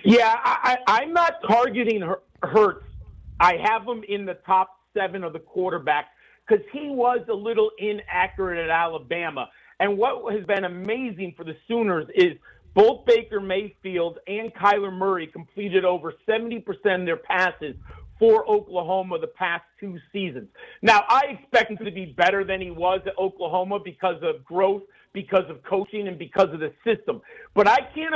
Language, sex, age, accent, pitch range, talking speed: English, male, 50-69, American, 185-230 Hz, 160 wpm